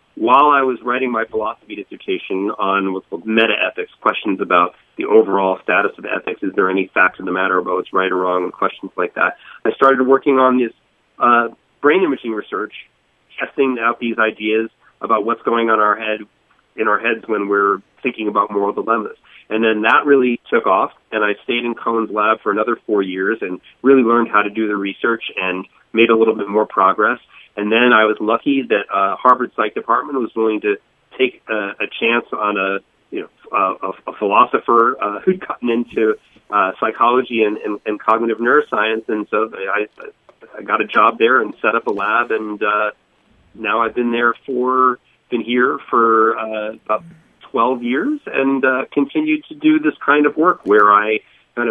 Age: 30-49